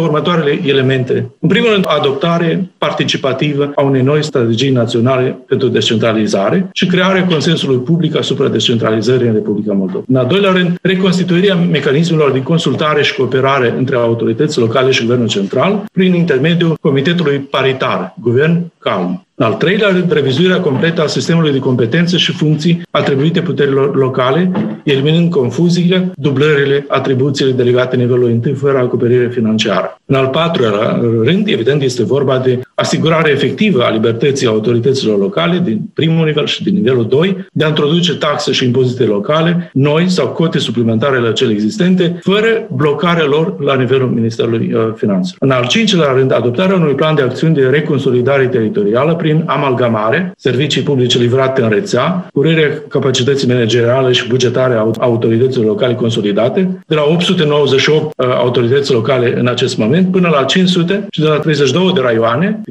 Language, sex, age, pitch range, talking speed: Romanian, male, 50-69, 125-175 Hz, 150 wpm